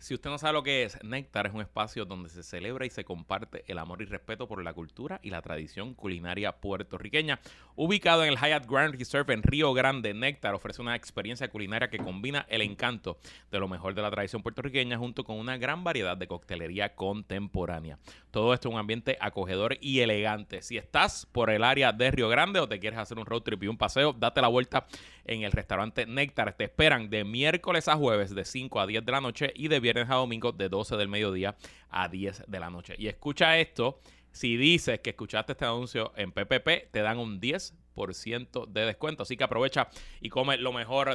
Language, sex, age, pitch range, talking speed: Spanish, male, 30-49, 100-130 Hz, 215 wpm